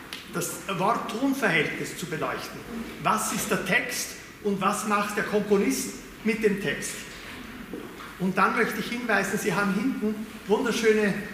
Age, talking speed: 40-59, 140 wpm